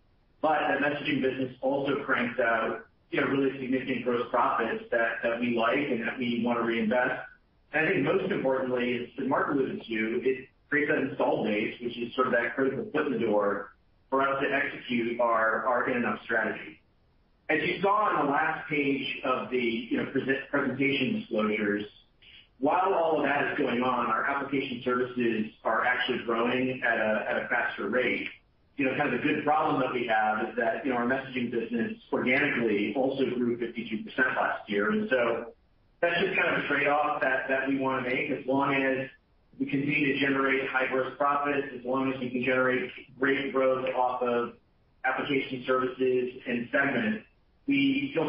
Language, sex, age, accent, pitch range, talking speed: English, male, 40-59, American, 120-135 Hz, 190 wpm